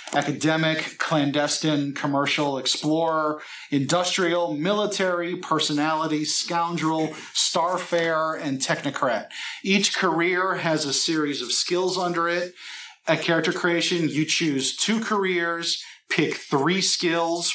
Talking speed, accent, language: 105 wpm, American, English